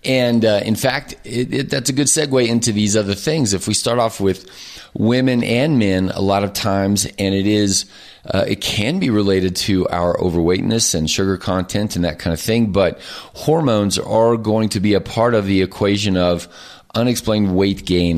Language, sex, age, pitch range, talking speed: English, male, 30-49, 90-115 Hz, 200 wpm